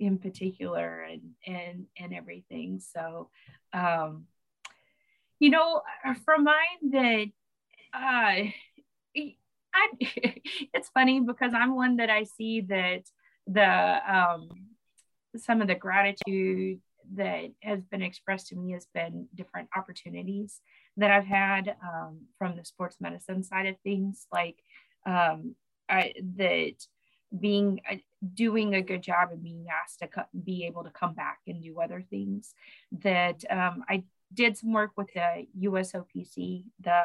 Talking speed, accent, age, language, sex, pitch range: 140 wpm, American, 30-49, English, female, 175-215 Hz